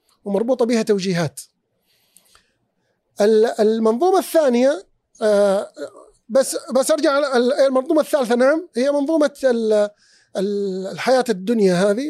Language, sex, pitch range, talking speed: Arabic, male, 195-265 Hz, 80 wpm